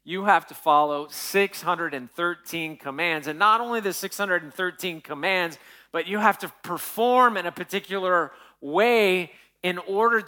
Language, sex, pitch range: English, male, 150-205 Hz